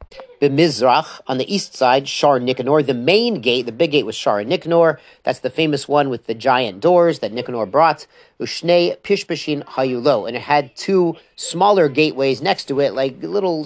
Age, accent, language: 40-59, American, English